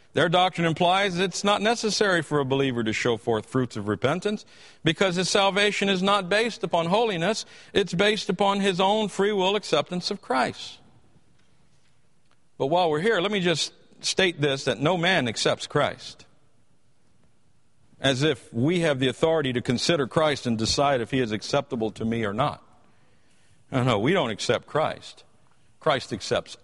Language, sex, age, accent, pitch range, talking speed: English, male, 50-69, American, 135-200 Hz, 165 wpm